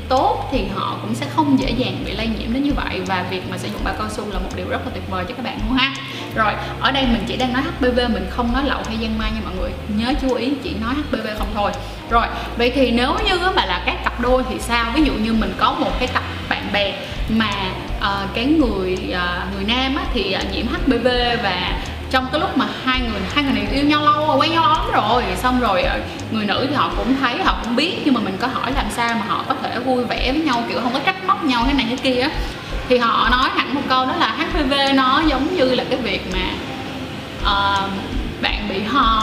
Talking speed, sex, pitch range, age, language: 255 wpm, female, 225-275 Hz, 20-39, Vietnamese